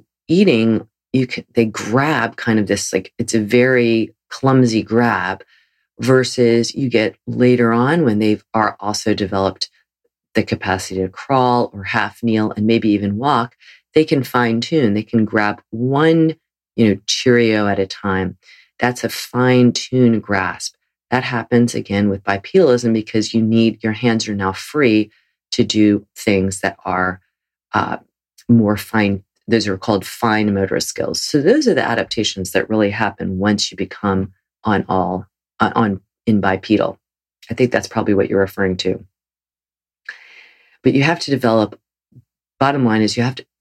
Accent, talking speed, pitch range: American, 160 wpm, 100-120 Hz